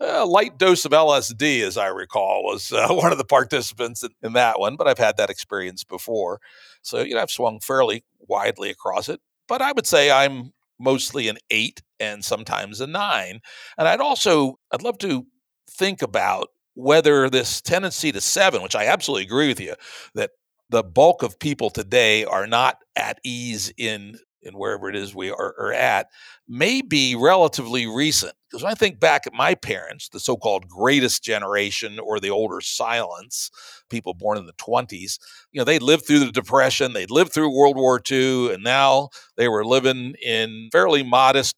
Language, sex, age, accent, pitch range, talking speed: English, male, 60-79, American, 115-150 Hz, 185 wpm